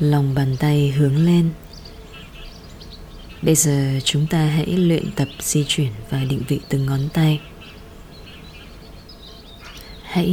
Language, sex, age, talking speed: English, female, 20-39, 120 wpm